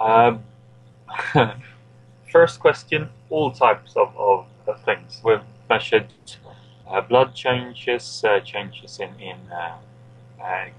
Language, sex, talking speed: English, male, 110 wpm